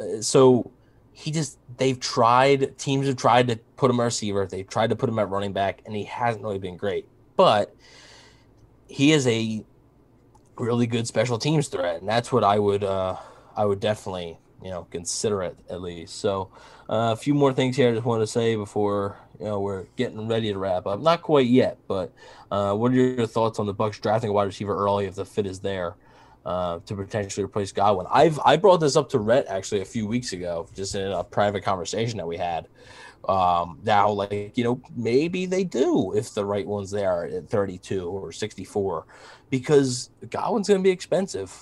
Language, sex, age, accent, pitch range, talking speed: English, male, 20-39, American, 100-125 Hz, 205 wpm